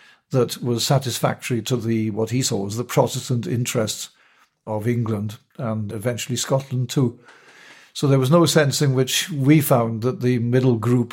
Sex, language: male, English